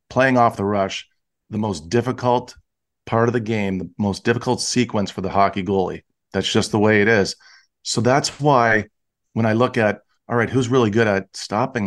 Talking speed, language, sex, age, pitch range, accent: 195 wpm, English, male, 40-59, 100-120 Hz, American